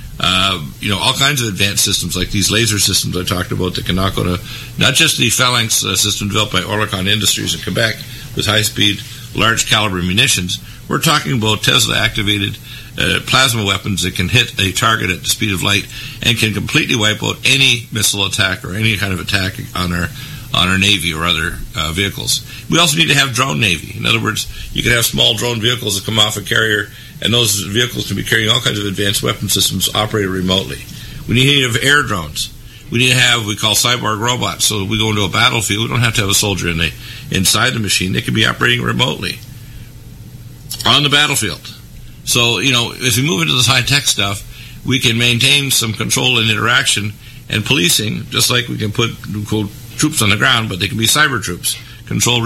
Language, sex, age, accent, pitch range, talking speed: English, male, 60-79, American, 100-125 Hz, 210 wpm